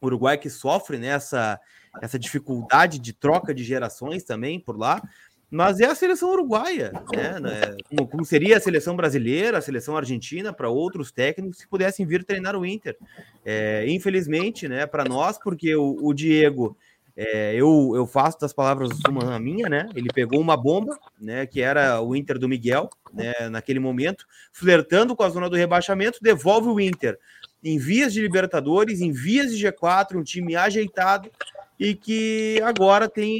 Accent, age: Brazilian, 20-39